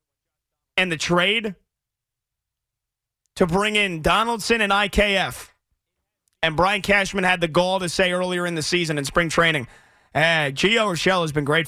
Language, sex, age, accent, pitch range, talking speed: English, male, 30-49, American, 145-195 Hz, 160 wpm